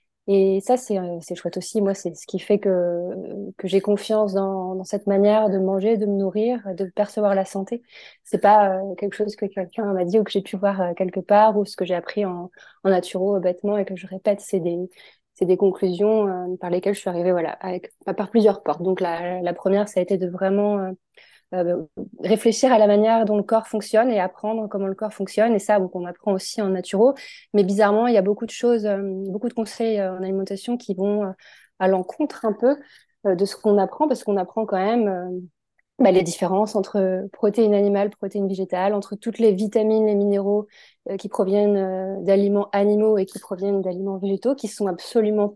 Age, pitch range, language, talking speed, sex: 20-39, 190-210 Hz, French, 215 wpm, female